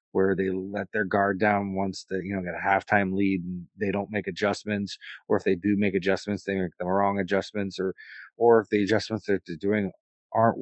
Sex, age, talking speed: male, 30-49, 220 wpm